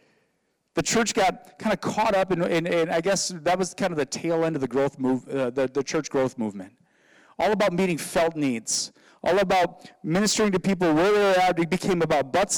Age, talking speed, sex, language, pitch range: 30-49, 230 wpm, male, English, 130-190 Hz